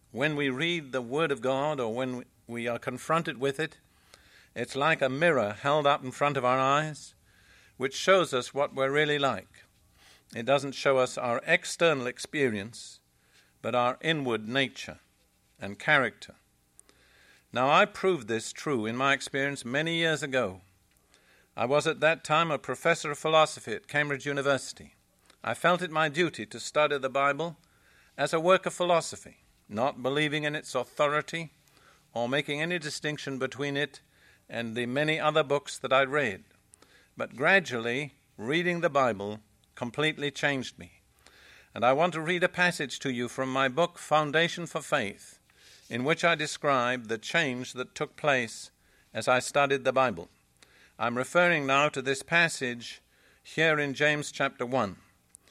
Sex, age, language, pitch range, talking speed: male, 50-69, English, 125-155 Hz, 160 wpm